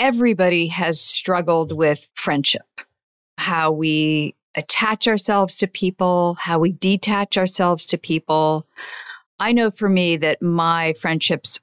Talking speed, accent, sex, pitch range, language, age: 125 wpm, American, female, 160-205 Hz, English, 50-69